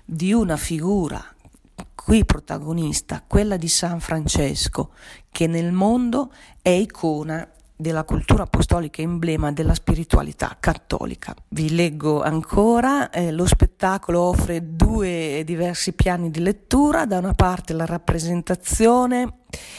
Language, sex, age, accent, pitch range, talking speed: Italian, female, 40-59, native, 160-195 Hz, 115 wpm